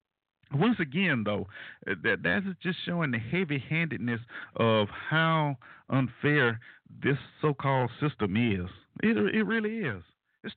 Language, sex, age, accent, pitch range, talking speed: English, male, 50-69, American, 110-170 Hz, 125 wpm